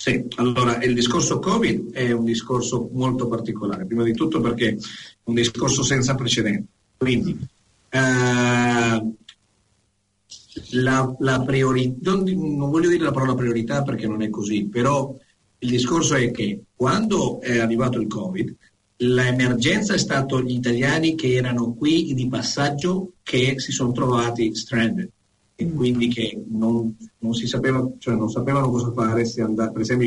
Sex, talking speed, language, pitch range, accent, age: male, 150 wpm, Italian, 110-130 Hz, native, 50-69